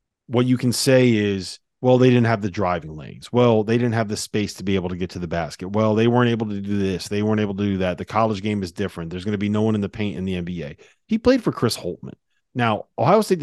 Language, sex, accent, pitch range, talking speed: English, male, American, 100-120 Hz, 285 wpm